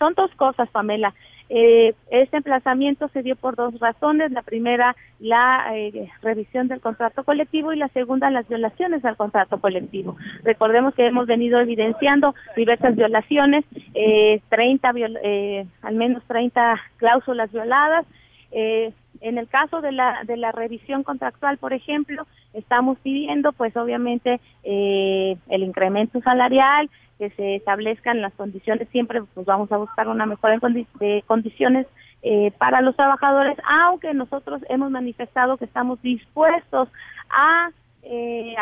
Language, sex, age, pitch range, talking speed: Spanish, female, 30-49, 225-275 Hz, 140 wpm